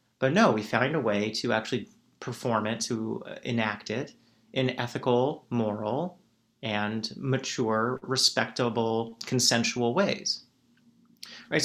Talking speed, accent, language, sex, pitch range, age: 115 wpm, American, English, male, 115-140 Hz, 30-49